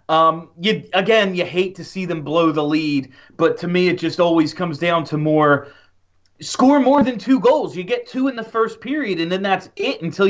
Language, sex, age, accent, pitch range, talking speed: English, male, 30-49, American, 140-190 Hz, 220 wpm